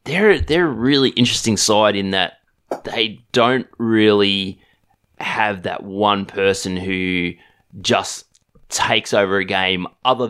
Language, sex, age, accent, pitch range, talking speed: English, male, 20-39, Australian, 95-115 Hz, 130 wpm